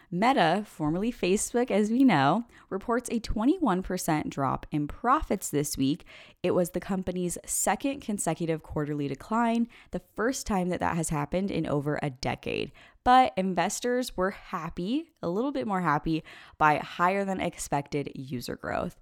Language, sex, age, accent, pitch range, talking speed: English, female, 10-29, American, 155-210 Hz, 150 wpm